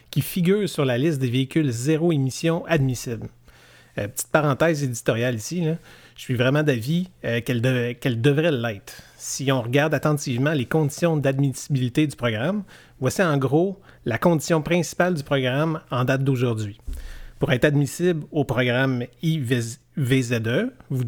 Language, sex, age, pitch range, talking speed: French, male, 30-49, 130-160 Hz, 140 wpm